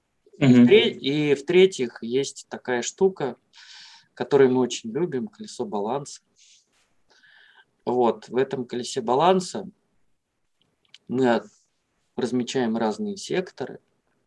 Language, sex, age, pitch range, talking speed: Russian, male, 20-39, 125-205 Hz, 85 wpm